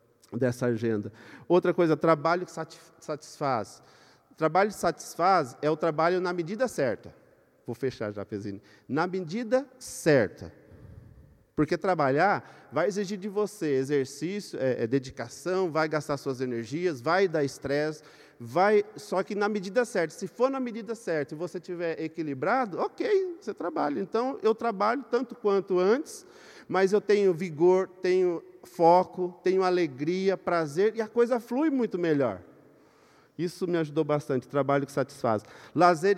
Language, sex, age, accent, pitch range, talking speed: Portuguese, male, 50-69, Brazilian, 140-200 Hz, 145 wpm